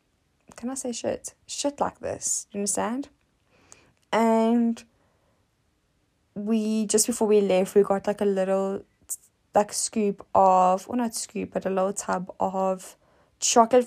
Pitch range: 185-225 Hz